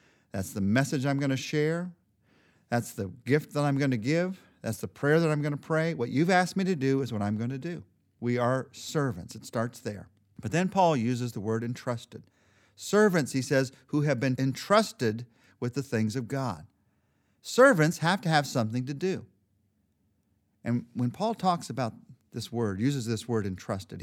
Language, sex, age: English, male, 50-69